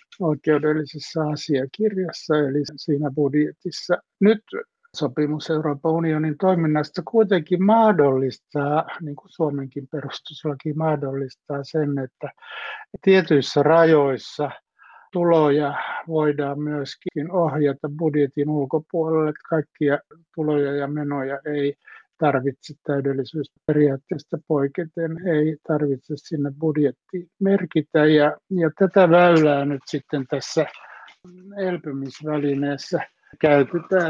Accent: native